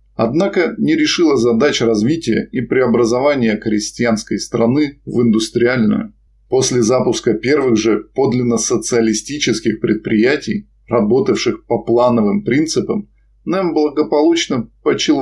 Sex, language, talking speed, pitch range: male, Russian, 100 wpm, 110-145 Hz